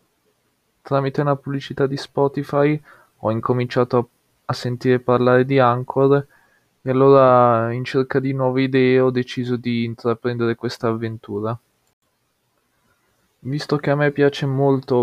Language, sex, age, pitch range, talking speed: Italian, male, 20-39, 110-130 Hz, 125 wpm